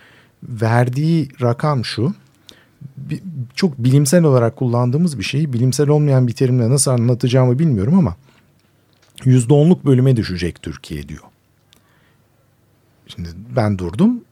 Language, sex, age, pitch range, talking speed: Turkish, male, 50-69, 110-145 Hz, 110 wpm